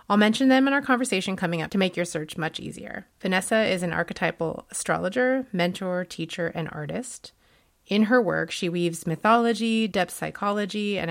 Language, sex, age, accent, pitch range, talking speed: English, female, 30-49, American, 170-225 Hz, 175 wpm